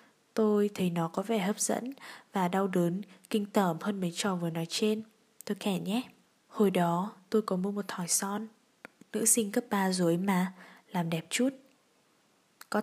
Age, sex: 10-29, female